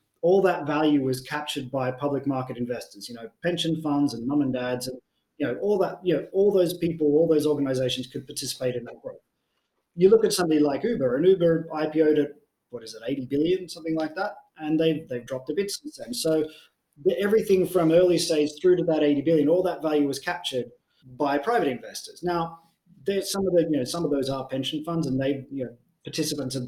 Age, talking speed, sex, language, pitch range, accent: 30-49, 225 wpm, male, English, 135-170 Hz, Australian